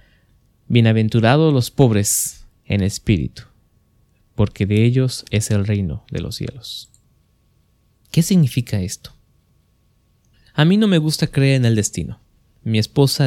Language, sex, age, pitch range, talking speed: English, male, 20-39, 100-125 Hz, 125 wpm